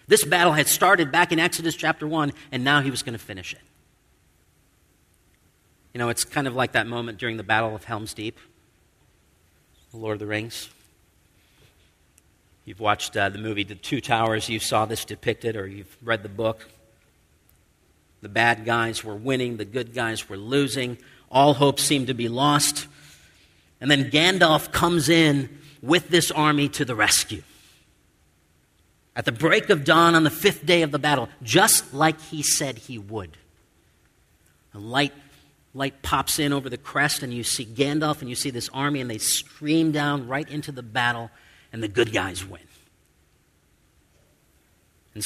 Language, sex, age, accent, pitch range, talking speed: English, male, 40-59, American, 100-145 Hz, 170 wpm